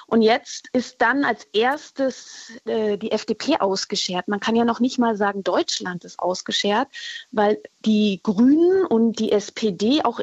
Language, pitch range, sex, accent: German, 210-270 Hz, female, German